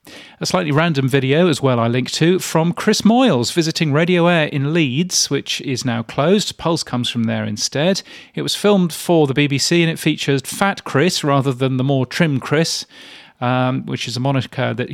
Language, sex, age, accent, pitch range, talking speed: English, male, 40-59, British, 120-150 Hz, 195 wpm